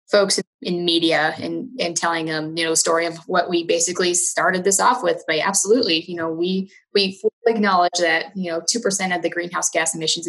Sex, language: female, English